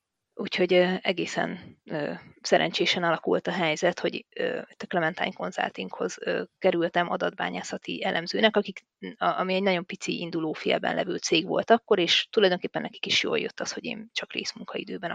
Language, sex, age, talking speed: Hungarian, female, 30-49, 135 wpm